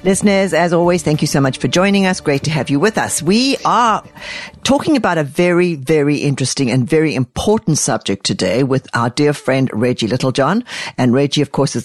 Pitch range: 130-170 Hz